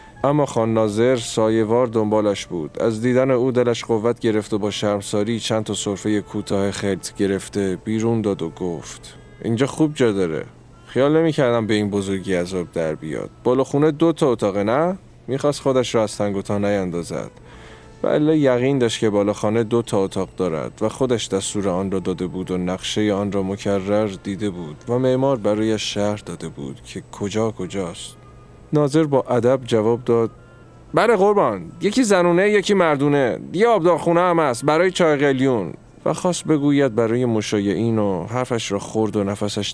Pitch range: 100-130 Hz